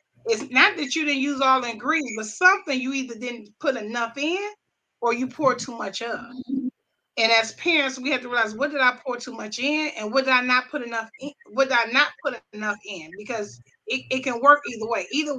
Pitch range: 215-290 Hz